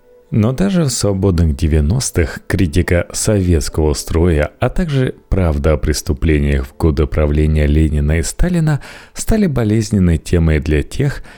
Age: 30-49